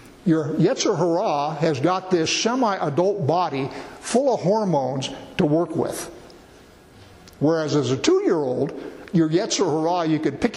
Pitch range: 145-195 Hz